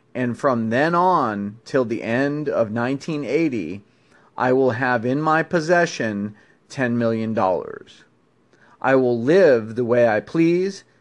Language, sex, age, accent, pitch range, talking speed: English, male, 40-59, American, 110-145 Hz, 130 wpm